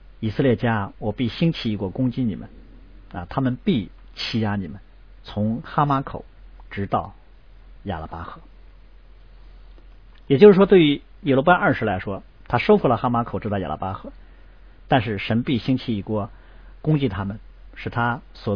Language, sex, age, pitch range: Chinese, male, 50-69, 100-130 Hz